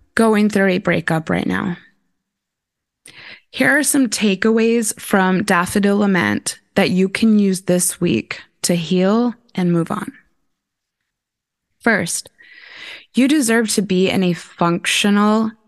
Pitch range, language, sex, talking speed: 175-215 Hz, English, female, 125 wpm